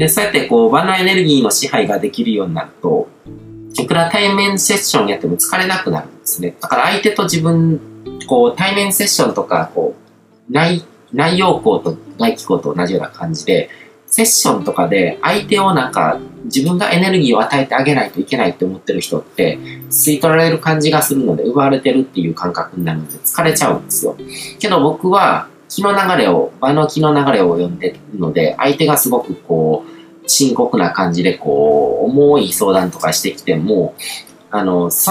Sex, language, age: male, Japanese, 40-59